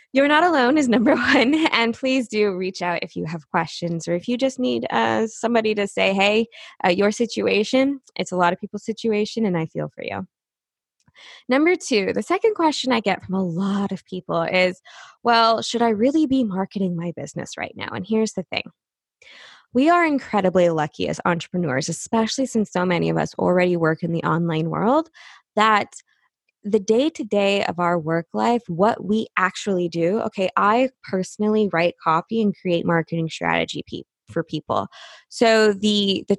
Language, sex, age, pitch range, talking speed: English, female, 20-39, 170-225 Hz, 180 wpm